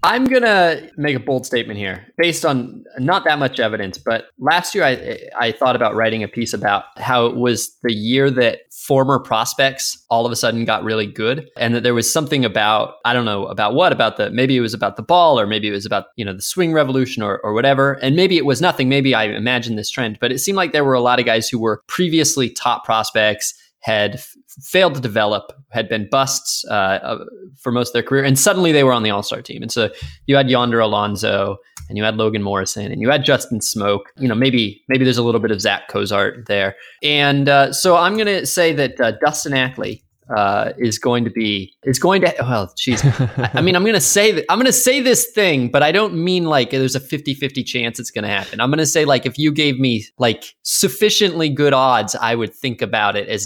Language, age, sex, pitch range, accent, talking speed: English, 20-39, male, 115-155 Hz, American, 235 wpm